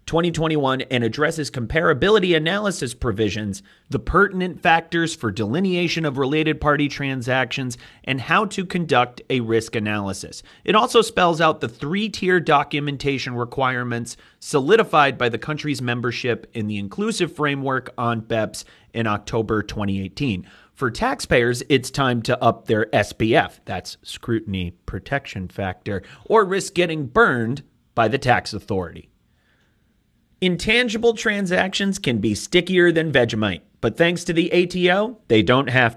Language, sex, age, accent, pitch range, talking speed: English, male, 30-49, American, 115-165 Hz, 130 wpm